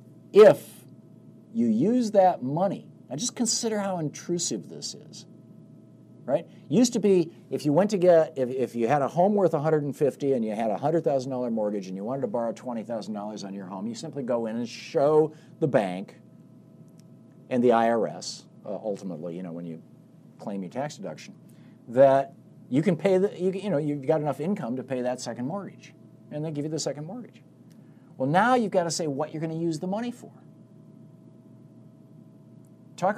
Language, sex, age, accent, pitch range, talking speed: English, male, 50-69, American, 120-185 Hz, 195 wpm